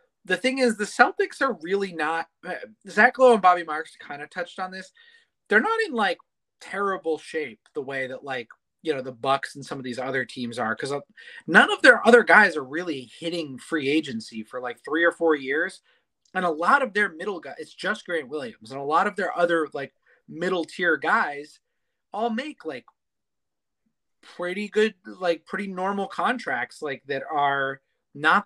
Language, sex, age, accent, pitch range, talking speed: English, male, 30-49, American, 135-200 Hz, 190 wpm